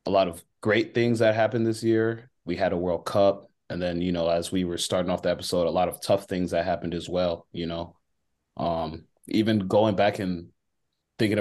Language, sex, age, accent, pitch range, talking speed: English, male, 30-49, American, 90-100 Hz, 220 wpm